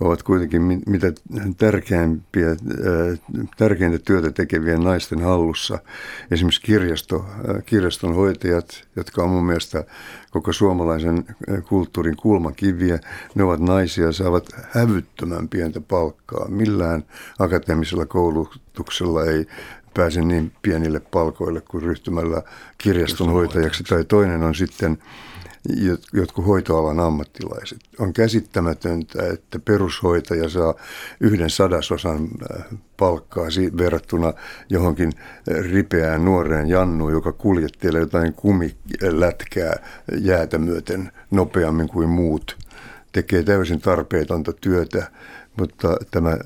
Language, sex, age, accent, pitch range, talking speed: Finnish, male, 60-79, native, 80-95 Hz, 95 wpm